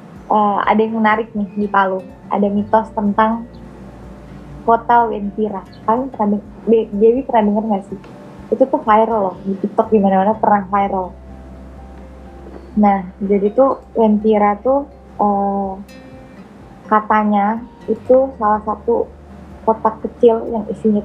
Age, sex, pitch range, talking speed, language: 20-39, female, 200-235 Hz, 130 wpm, Indonesian